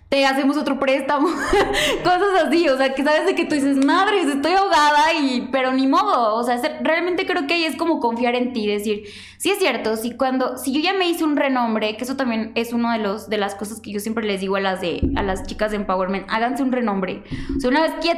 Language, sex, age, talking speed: Spanish, female, 10-29, 255 wpm